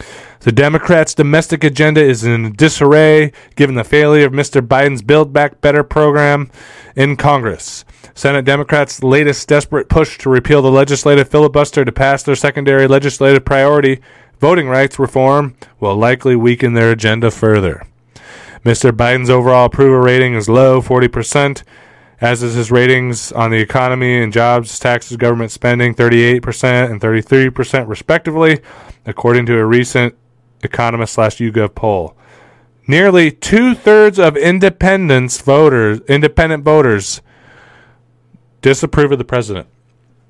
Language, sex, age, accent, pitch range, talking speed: English, male, 20-39, American, 120-145 Hz, 130 wpm